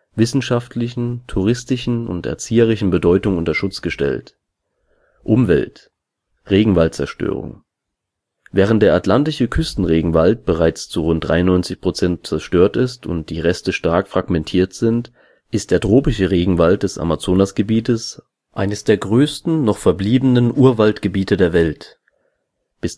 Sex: male